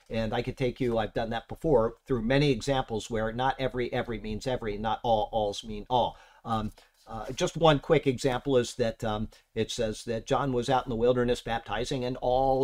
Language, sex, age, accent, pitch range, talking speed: English, male, 50-69, American, 120-145 Hz, 210 wpm